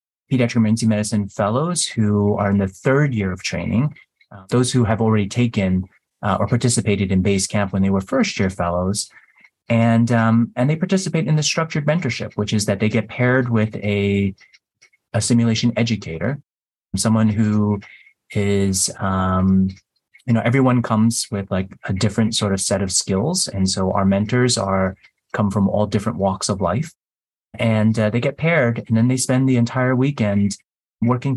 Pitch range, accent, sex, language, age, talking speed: 100-120 Hz, American, male, English, 30-49, 175 wpm